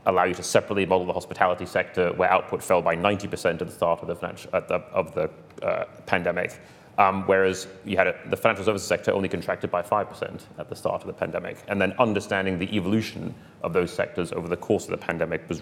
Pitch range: 85-100 Hz